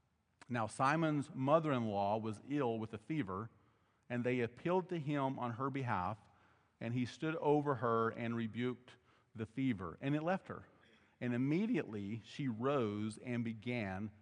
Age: 40-59